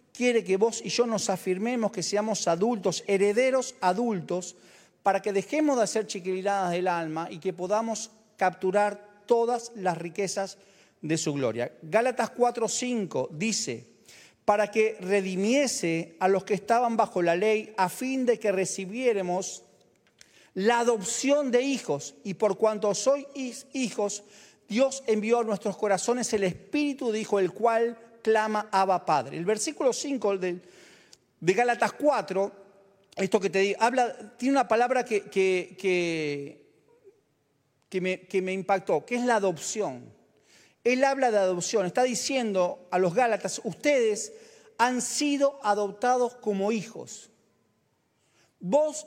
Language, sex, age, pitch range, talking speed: Spanish, male, 40-59, 190-245 Hz, 140 wpm